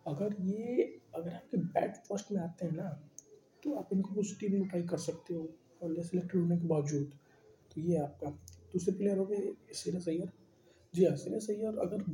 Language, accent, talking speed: English, Indian, 175 wpm